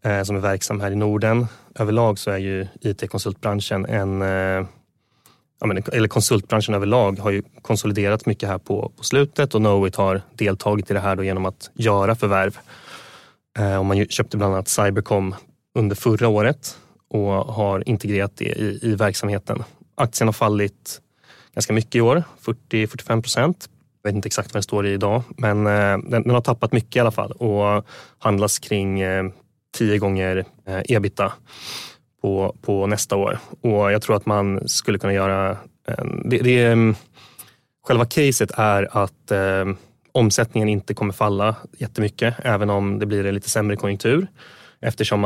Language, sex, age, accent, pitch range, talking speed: Swedish, male, 20-39, native, 100-115 Hz, 155 wpm